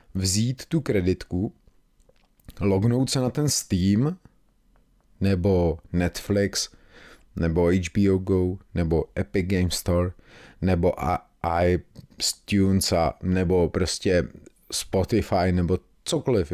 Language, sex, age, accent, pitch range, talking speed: Czech, male, 30-49, native, 90-115 Hz, 85 wpm